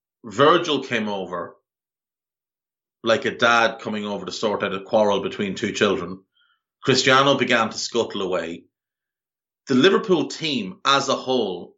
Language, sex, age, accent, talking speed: English, male, 30-49, Irish, 140 wpm